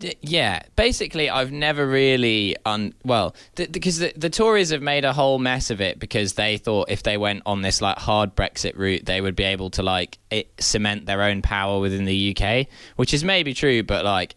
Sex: male